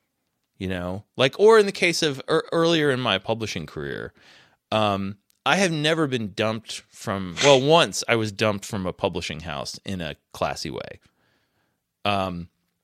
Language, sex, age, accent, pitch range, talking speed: English, male, 30-49, American, 95-140 Hz, 165 wpm